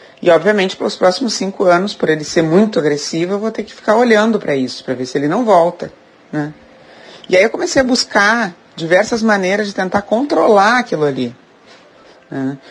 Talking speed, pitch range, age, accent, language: 195 wpm, 160-225 Hz, 30-49, Brazilian, Portuguese